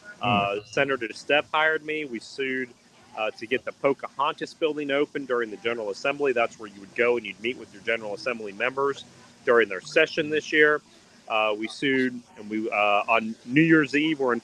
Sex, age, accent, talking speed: male, 40-59, American, 200 wpm